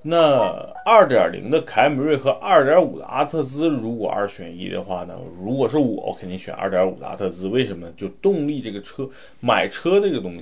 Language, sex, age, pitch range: Chinese, male, 30-49, 100-140 Hz